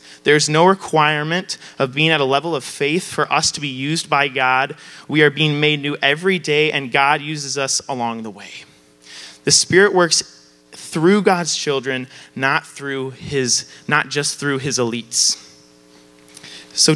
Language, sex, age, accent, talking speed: English, male, 30-49, American, 165 wpm